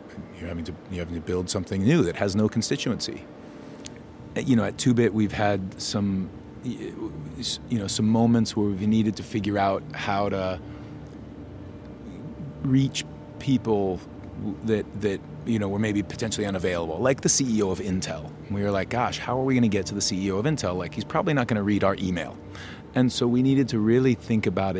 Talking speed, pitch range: 190 wpm, 100-125 Hz